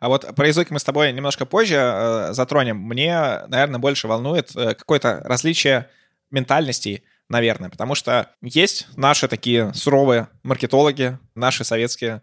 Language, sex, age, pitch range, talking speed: Russian, male, 20-39, 115-145 Hz, 135 wpm